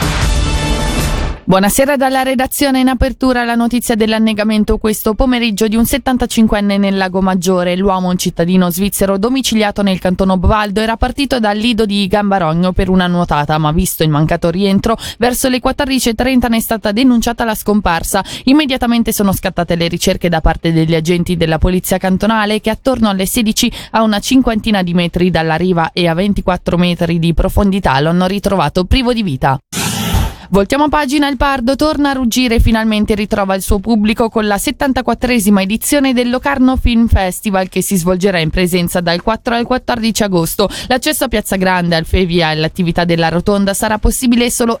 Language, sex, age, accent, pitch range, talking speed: Italian, female, 20-39, native, 185-240 Hz, 165 wpm